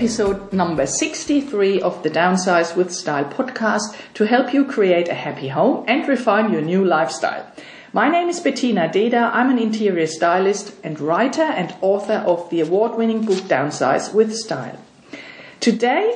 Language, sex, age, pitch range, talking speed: English, female, 50-69, 175-230 Hz, 155 wpm